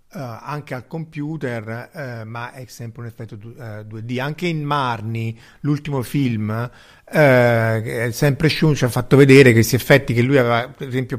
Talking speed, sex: 175 wpm, male